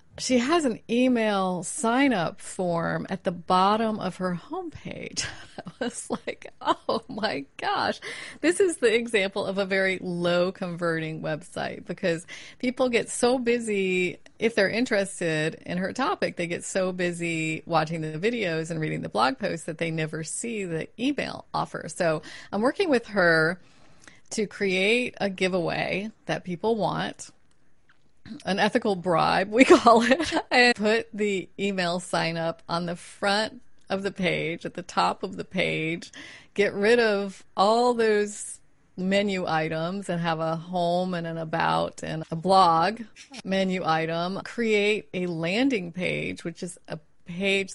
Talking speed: 150 wpm